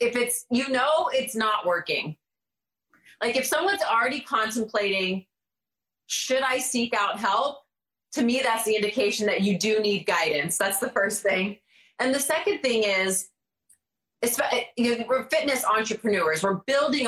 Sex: female